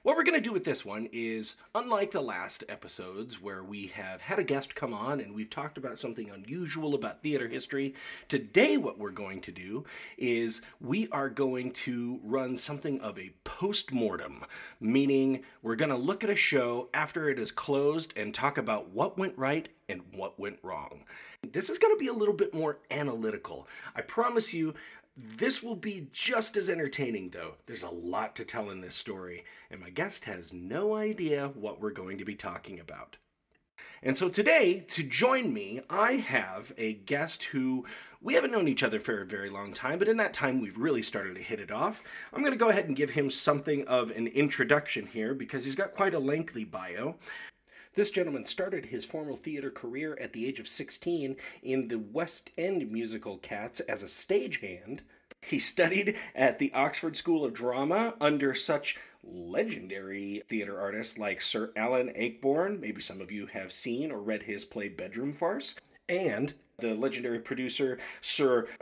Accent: American